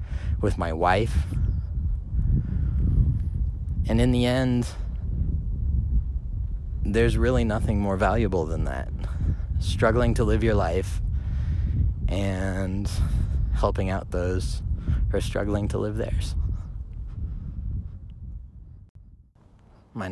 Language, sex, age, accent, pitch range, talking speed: English, male, 20-39, American, 85-105 Hz, 90 wpm